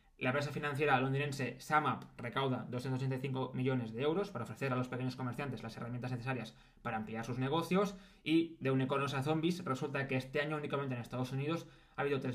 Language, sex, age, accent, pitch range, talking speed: Spanish, male, 20-39, Spanish, 125-145 Hz, 190 wpm